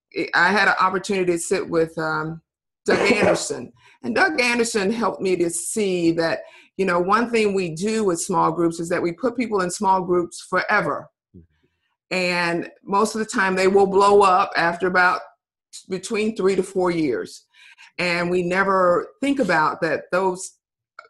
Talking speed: 170 wpm